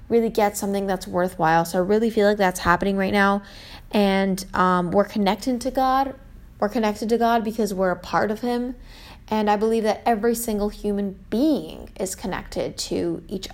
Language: English